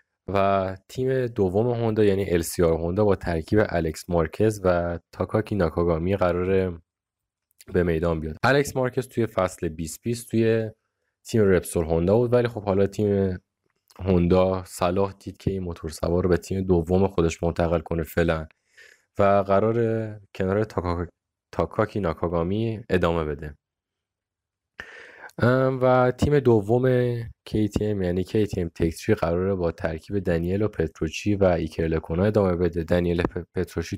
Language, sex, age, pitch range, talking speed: Persian, male, 20-39, 85-105 Hz, 130 wpm